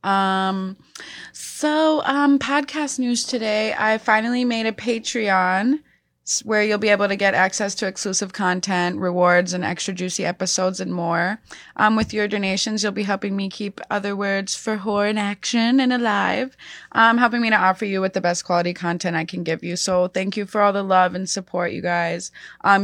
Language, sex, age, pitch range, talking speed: English, female, 20-39, 180-220 Hz, 190 wpm